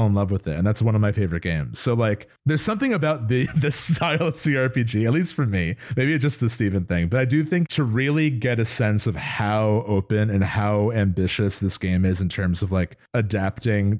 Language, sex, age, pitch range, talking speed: English, male, 30-49, 100-125 Hz, 230 wpm